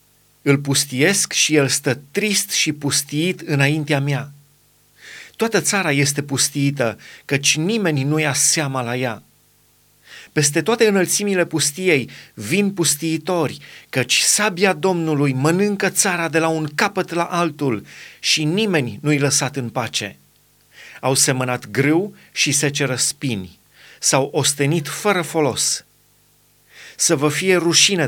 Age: 30-49